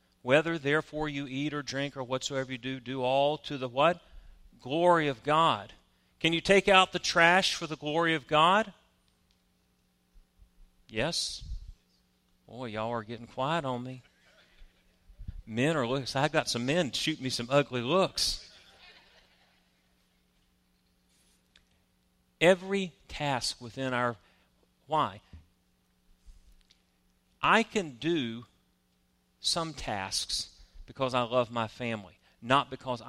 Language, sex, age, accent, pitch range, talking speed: English, male, 40-59, American, 90-150 Hz, 120 wpm